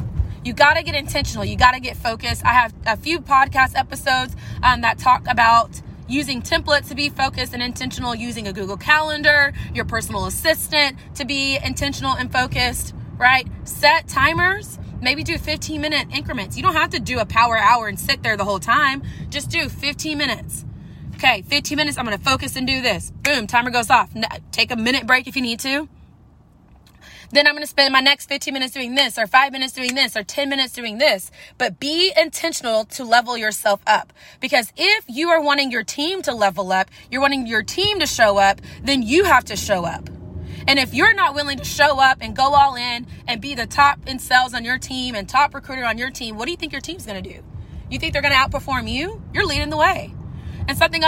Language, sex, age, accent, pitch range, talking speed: English, female, 20-39, American, 240-290 Hz, 215 wpm